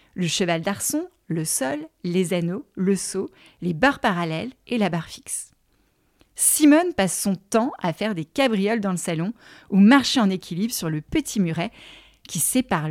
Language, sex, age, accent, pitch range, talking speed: French, female, 30-49, French, 180-280 Hz, 170 wpm